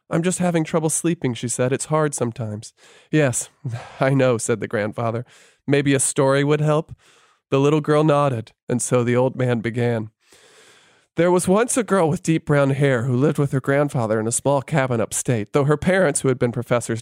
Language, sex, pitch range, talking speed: English, male, 125-175 Hz, 200 wpm